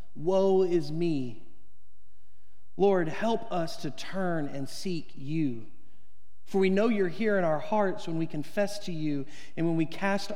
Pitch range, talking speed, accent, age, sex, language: 115-190 Hz, 160 wpm, American, 40-59, male, English